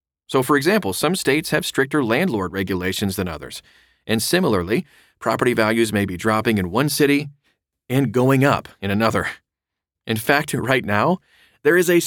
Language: English